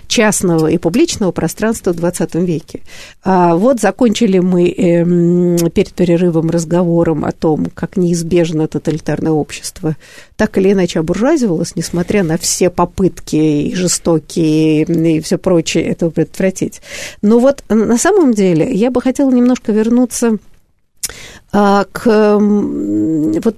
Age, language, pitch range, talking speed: 50-69, Russian, 175-230 Hz, 120 wpm